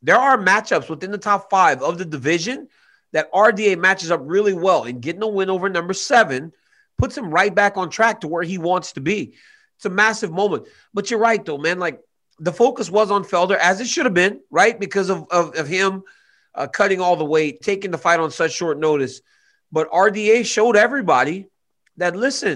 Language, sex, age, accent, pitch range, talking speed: English, male, 30-49, American, 155-210 Hz, 210 wpm